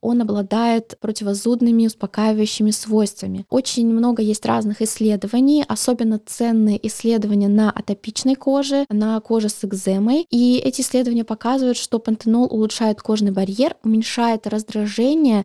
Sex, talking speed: female, 120 wpm